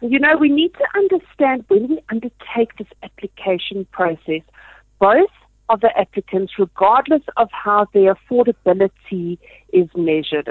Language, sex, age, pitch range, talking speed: English, female, 50-69, 175-230 Hz, 130 wpm